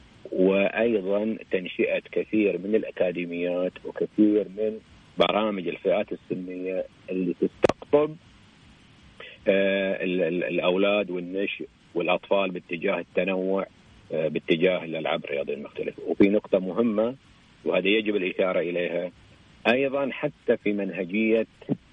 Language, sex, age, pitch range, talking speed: Arabic, male, 50-69, 95-120 Hz, 100 wpm